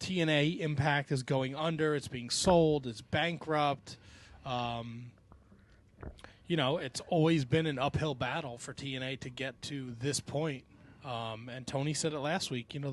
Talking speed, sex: 160 wpm, male